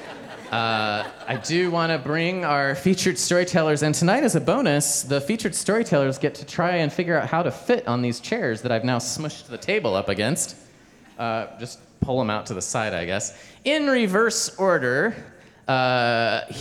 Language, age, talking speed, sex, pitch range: English, 30-49, 185 wpm, male, 115-160 Hz